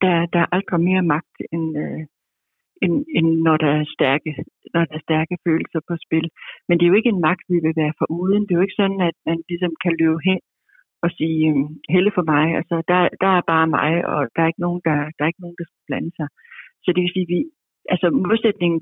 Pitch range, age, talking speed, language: 160-190 Hz, 60-79, 205 wpm, Danish